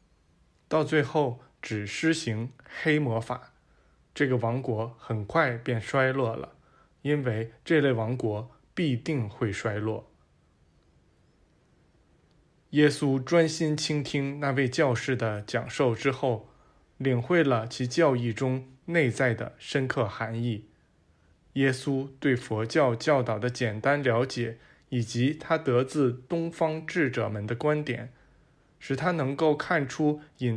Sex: male